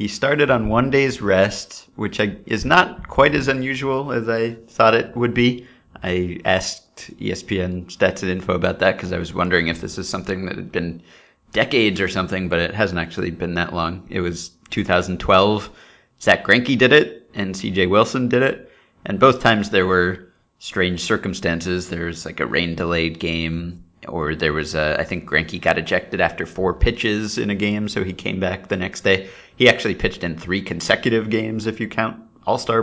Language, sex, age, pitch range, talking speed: English, male, 30-49, 90-115 Hz, 190 wpm